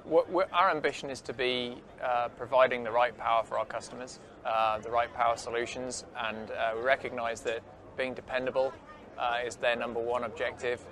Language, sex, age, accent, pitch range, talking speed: English, male, 20-39, British, 115-130 Hz, 175 wpm